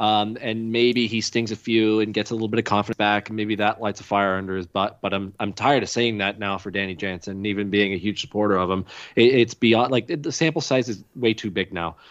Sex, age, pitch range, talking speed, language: male, 20-39, 105-140 Hz, 275 wpm, English